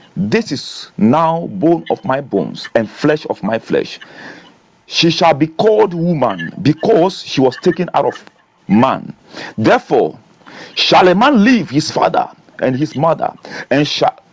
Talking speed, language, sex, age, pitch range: 150 wpm, English, male, 50-69, 150-240 Hz